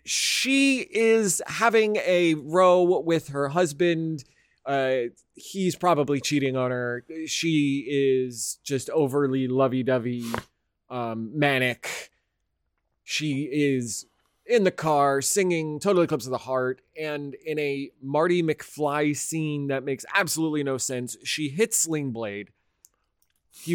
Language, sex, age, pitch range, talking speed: English, male, 30-49, 125-175 Hz, 120 wpm